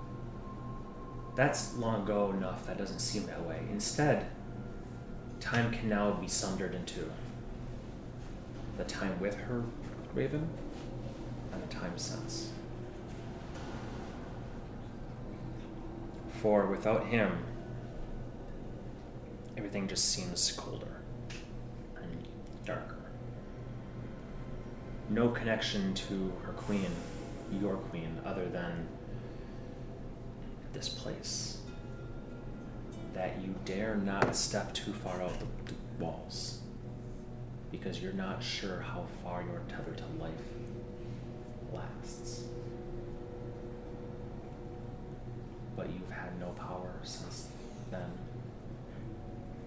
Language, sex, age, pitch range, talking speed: English, male, 30-49, 100-120 Hz, 90 wpm